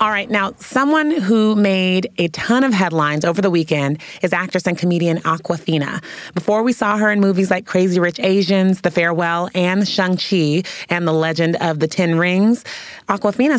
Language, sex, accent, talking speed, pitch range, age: English, female, American, 175 wpm, 160-205 Hz, 30-49